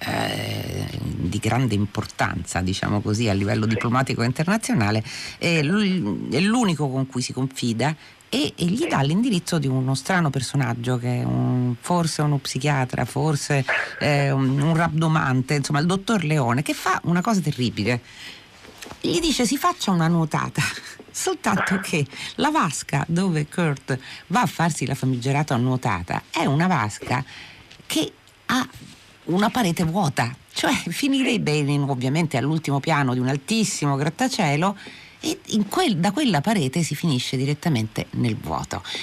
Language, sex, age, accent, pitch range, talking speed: Italian, female, 40-59, native, 125-175 Hz, 140 wpm